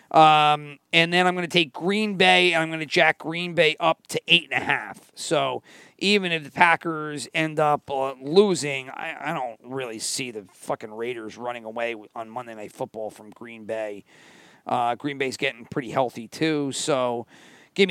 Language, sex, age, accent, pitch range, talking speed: English, male, 40-59, American, 135-175 Hz, 180 wpm